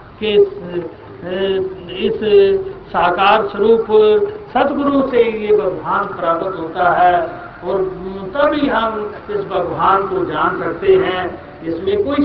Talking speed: 110 wpm